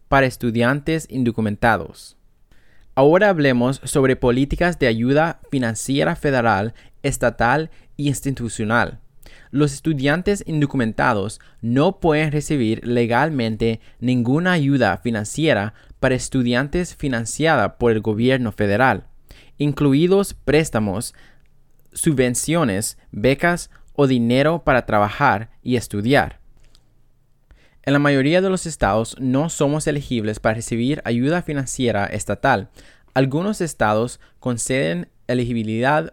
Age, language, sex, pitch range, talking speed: 20-39, Spanish, male, 115-145 Hz, 100 wpm